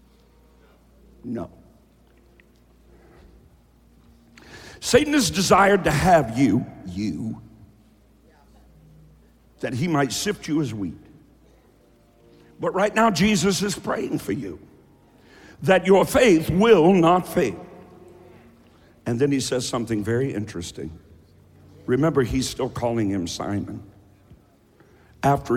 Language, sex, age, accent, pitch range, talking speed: English, male, 60-79, American, 95-165 Hz, 100 wpm